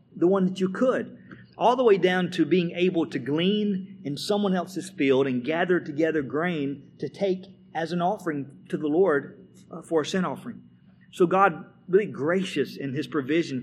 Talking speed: 180 wpm